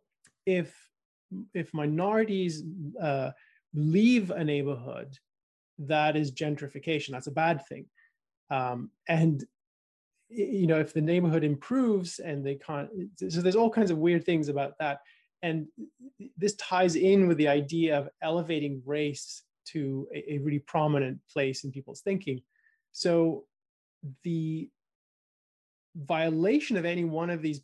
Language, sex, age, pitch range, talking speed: English, male, 30-49, 140-175 Hz, 130 wpm